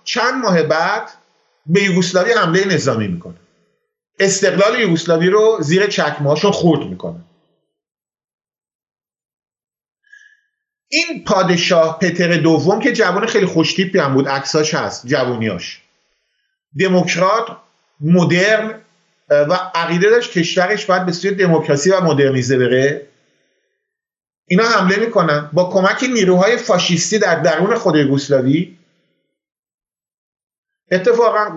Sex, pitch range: male, 165-215 Hz